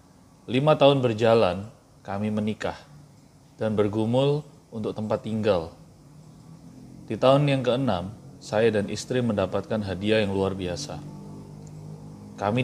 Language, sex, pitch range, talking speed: Indonesian, male, 100-125 Hz, 110 wpm